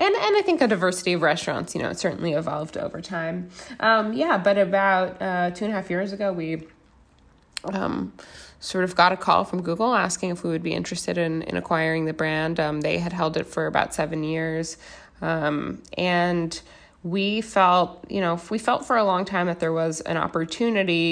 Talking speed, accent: 205 wpm, American